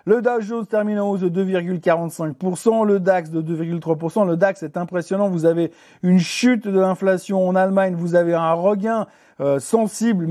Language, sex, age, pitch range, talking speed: French, male, 50-69, 170-205 Hz, 175 wpm